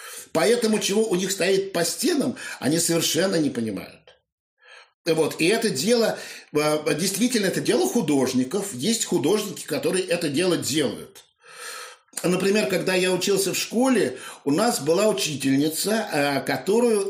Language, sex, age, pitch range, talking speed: Russian, male, 50-69, 155-215 Hz, 125 wpm